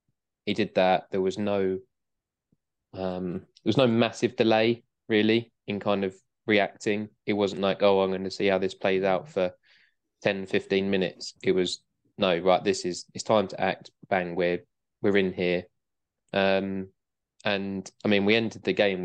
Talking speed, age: 175 wpm, 20-39